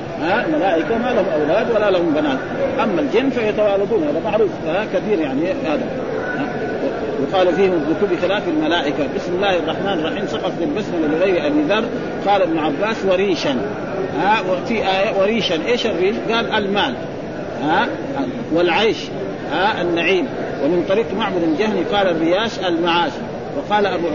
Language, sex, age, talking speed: Arabic, male, 50-69, 130 wpm